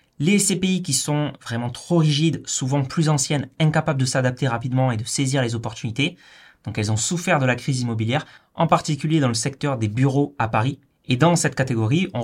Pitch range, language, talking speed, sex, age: 125-160 Hz, French, 200 wpm, male, 20-39